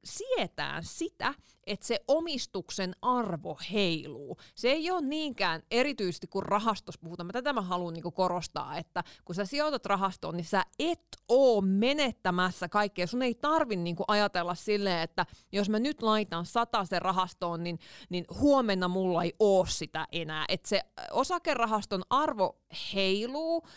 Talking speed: 140 wpm